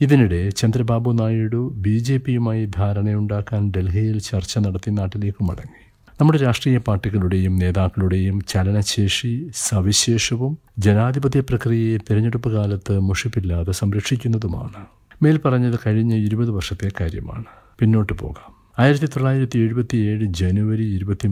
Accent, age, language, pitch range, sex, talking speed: native, 60-79, Malayalam, 100-120 Hz, male, 105 wpm